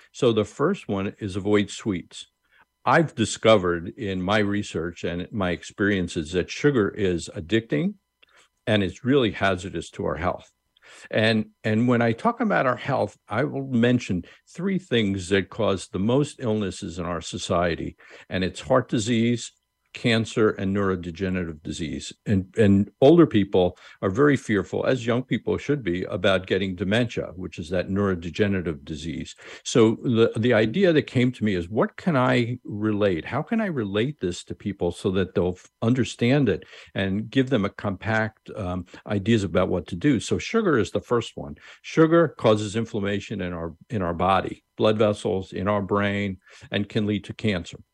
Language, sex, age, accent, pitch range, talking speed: English, male, 50-69, American, 95-120 Hz, 170 wpm